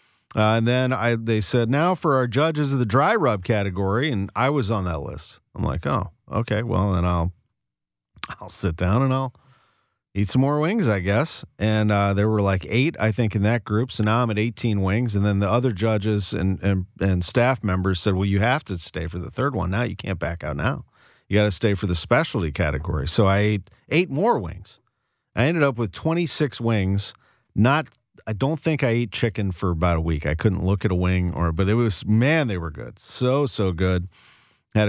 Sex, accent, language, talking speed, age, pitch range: male, American, English, 225 wpm, 40-59, 95-120 Hz